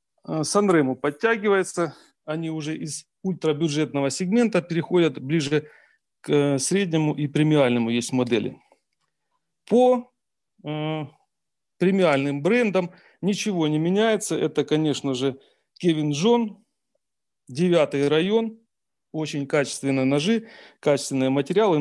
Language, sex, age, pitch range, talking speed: Russian, male, 40-59, 145-185 Hz, 95 wpm